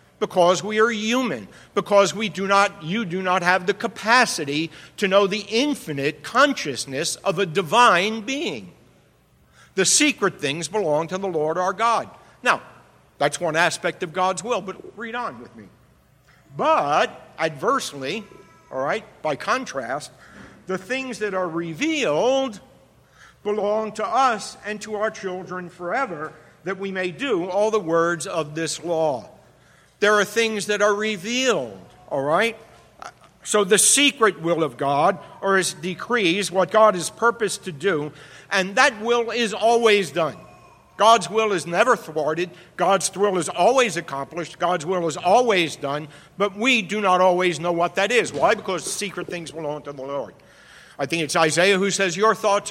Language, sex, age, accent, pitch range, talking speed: English, male, 60-79, American, 165-215 Hz, 165 wpm